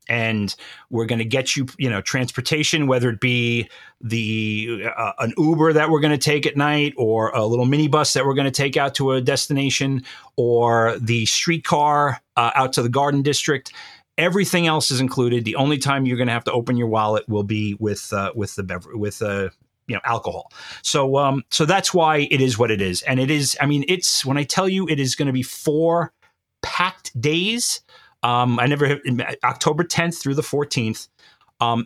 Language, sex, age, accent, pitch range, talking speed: English, male, 40-59, American, 120-150 Hz, 210 wpm